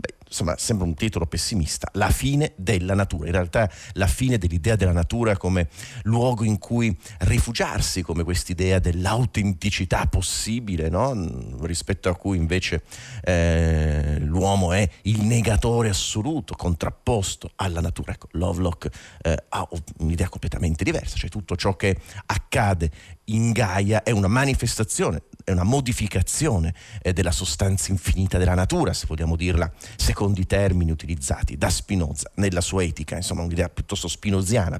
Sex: male